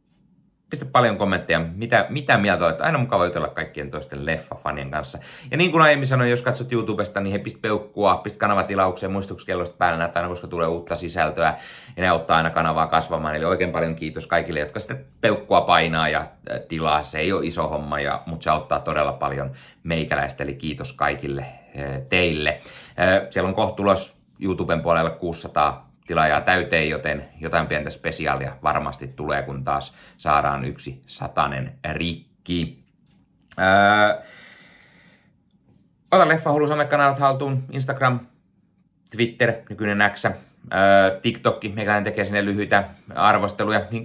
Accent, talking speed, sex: native, 145 wpm, male